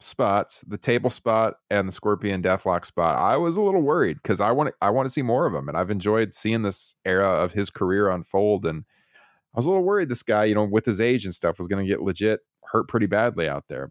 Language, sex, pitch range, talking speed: English, male, 95-125 Hz, 255 wpm